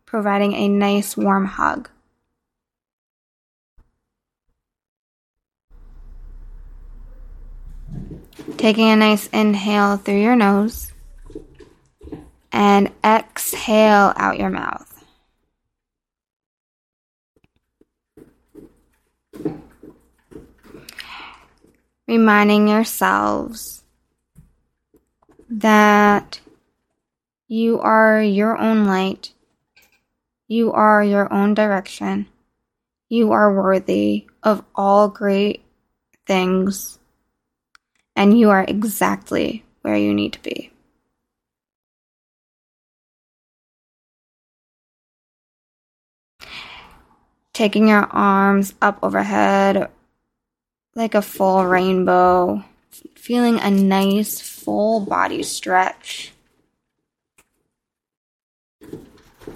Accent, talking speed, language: American, 60 wpm, English